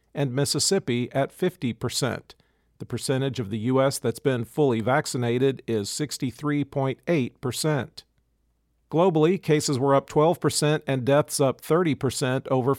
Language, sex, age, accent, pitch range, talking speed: English, male, 50-69, American, 125-145 Hz, 135 wpm